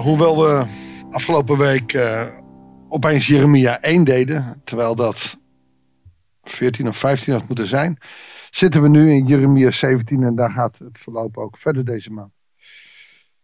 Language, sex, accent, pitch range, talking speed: Dutch, male, Dutch, 120-155 Hz, 145 wpm